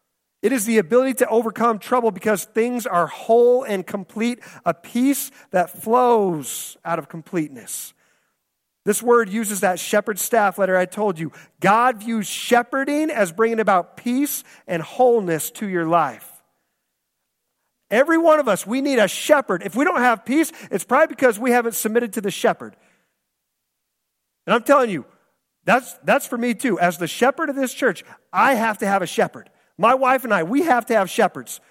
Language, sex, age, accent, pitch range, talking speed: English, male, 40-59, American, 175-250 Hz, 180 wpm